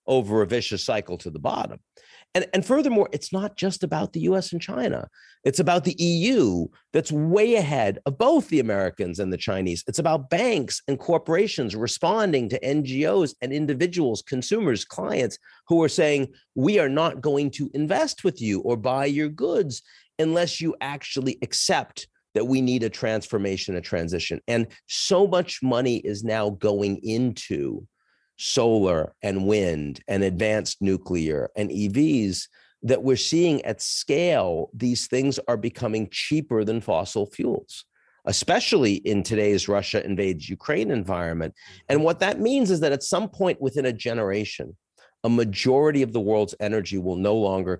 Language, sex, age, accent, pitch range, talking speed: English, male, 50-69, American, 100-150 Hz, 160 wpm